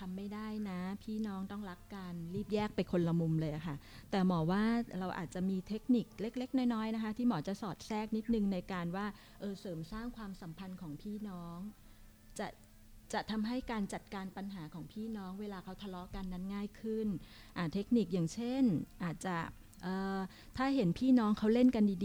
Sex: female